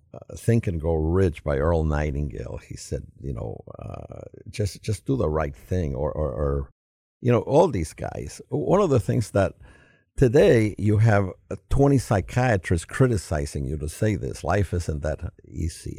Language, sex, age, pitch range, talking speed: English, male, 60-79, 80-110 Hz, 175 wpm